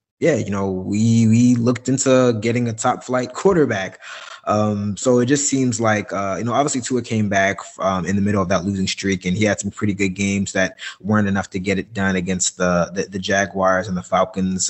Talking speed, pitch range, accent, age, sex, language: 225 wpm, 95-105 Hz, American, 20-39, male, English